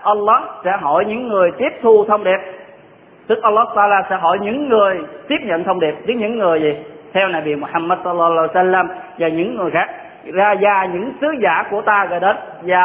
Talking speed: 210 wpm